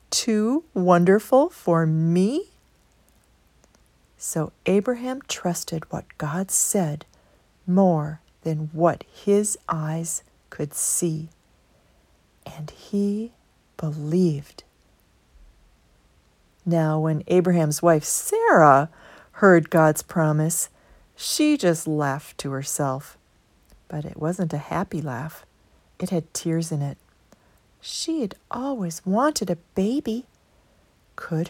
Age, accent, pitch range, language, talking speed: 40-59, American, 150-200 Hz, English, 95 wpm